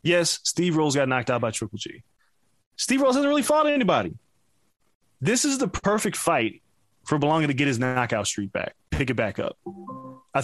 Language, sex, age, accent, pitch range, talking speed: English, male, 20-39, American, 135-190 Hz, 190 wpm